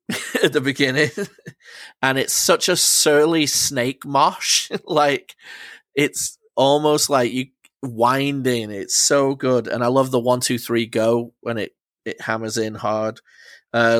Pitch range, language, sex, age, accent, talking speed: 120-150 Hz, English, male, 20-39, British, 145 wpm